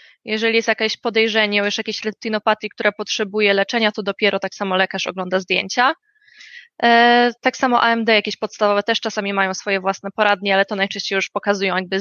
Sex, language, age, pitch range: female, Polish, 20-39, 200-235 Hz